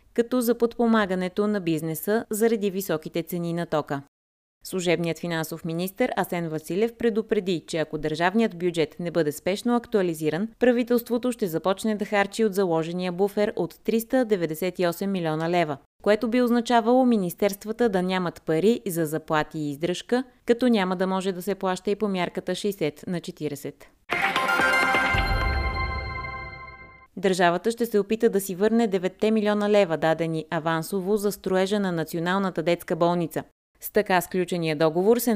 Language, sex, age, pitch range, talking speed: Bulgarian, female, 30-49, 165-220 Hz, 140 wpm